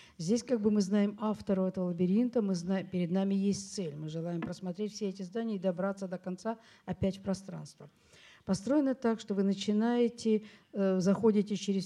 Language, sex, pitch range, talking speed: French, female, 180-210 Hz, 175 wpm